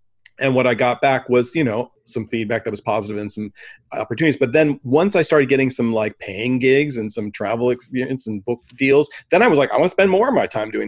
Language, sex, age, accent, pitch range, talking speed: English, male, 40-59, American, 115-140 Hz, 255 wpm